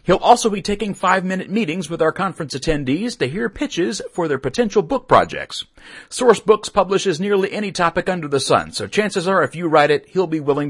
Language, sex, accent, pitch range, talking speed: English, male, American, 145-205 Hz, 210 wpm